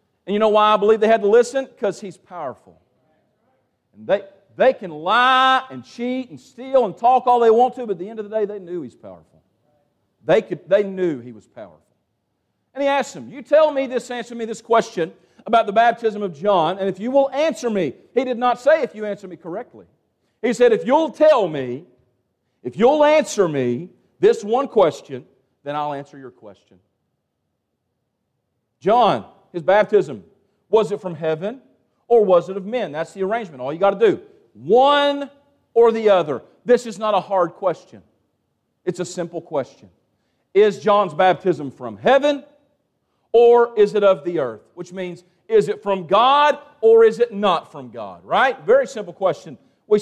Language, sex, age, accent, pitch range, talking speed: English, male, 40-59, American, 185-245 Hz, 190 wpm